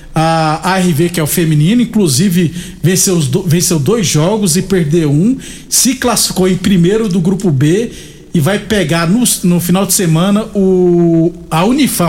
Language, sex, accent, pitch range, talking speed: Portuguese, male, Brazilian, 170-205 Hz, 145 wpm